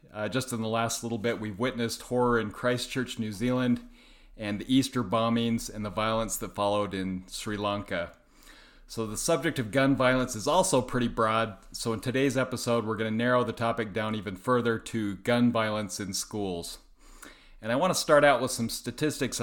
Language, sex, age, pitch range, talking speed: English, male, 40-59, 110-125 Hz, 195 wpm